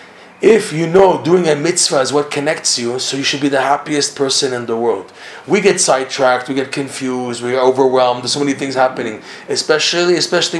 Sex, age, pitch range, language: male, 30-49, 130-165 Hz, English